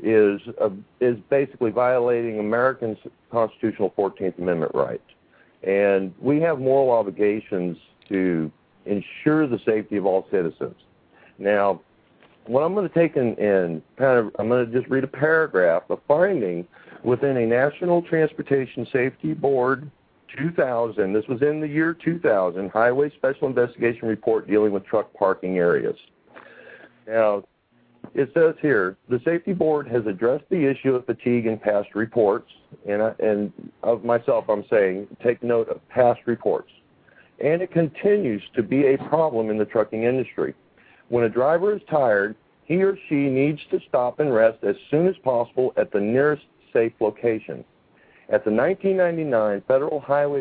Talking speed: 150 wpm